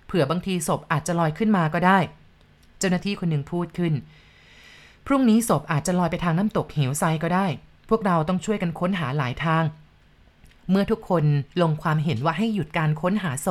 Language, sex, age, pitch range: Thai, female, 30-49, 160-210 Hz